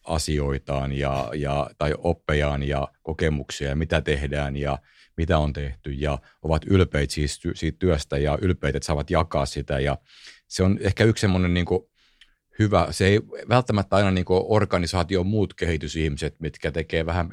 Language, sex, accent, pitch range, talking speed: Finnish, male, native, 75-90 Hz, 150 wpm